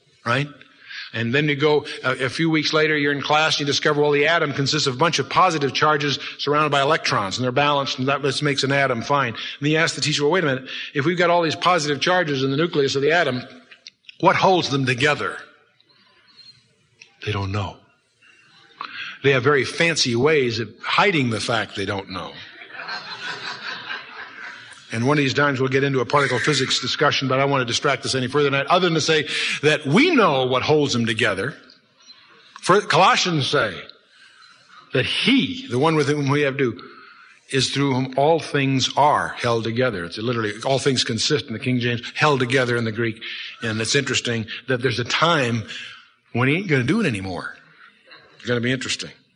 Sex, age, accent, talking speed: male, 50-69, American, 200 wpm